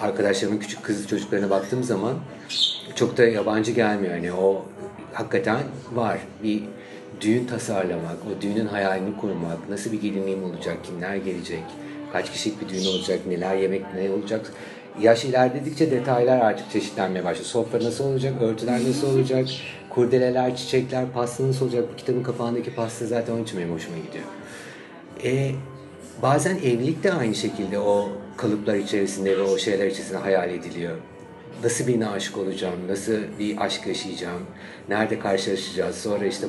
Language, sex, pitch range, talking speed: Turkish, male, 100-130 Hz, 145 wpm